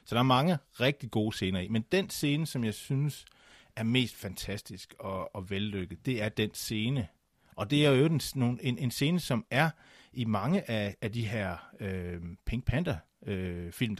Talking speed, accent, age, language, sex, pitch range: 185 wpm, native, 30-49, Danish, male, 100-130 Hz